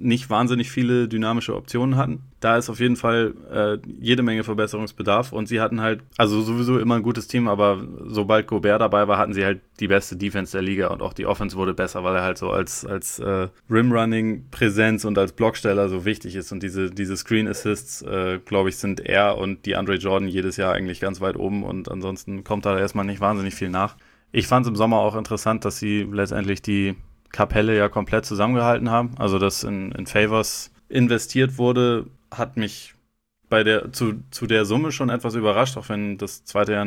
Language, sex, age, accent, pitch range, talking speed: German, male, 20-39, German, 100-115 Hz, 200 wpm